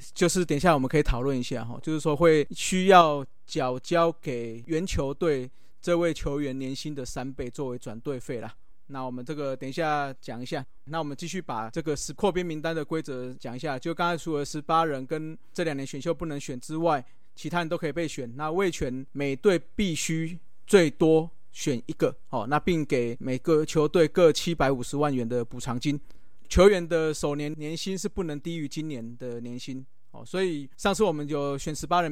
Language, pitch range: Chinese, 130-165 Hz